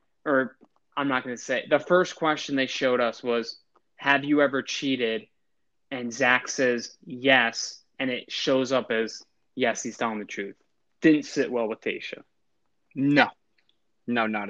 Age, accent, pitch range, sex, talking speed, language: 20-39, American, 120-135 Hz, male, 160 wpm, English